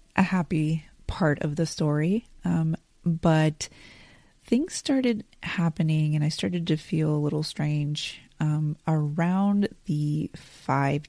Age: 30-49